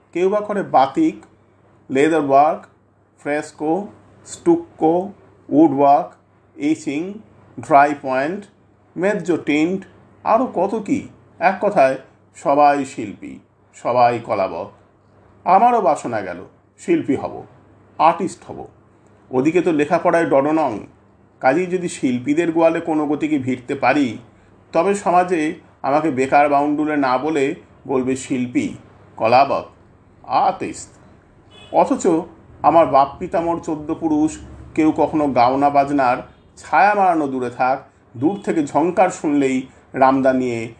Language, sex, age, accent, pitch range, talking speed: Hindi, male, 50-69, native, 125-180 Hz, 100 wpm